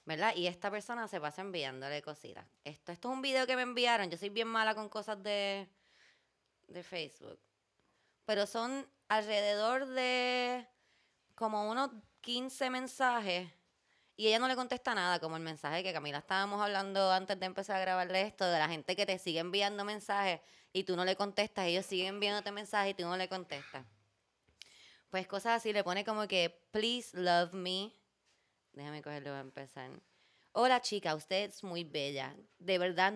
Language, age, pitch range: Spanish, 20-39, 150-210 Hz